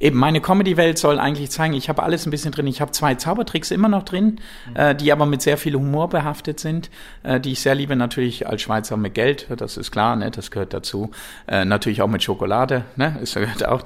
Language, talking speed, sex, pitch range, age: German, 235 wpm, male, 120-160 Hz, 50-69